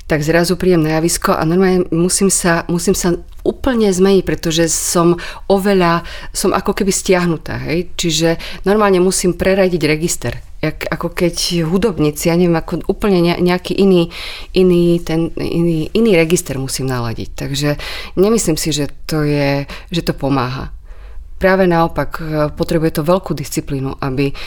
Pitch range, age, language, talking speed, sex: 140-170 Hz, 30-49, Slovak, 145 wpm, female